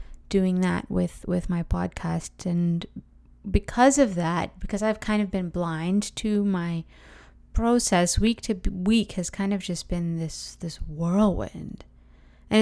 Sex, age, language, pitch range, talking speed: female, 20-39, English, 160-195 Hz, 145 wpm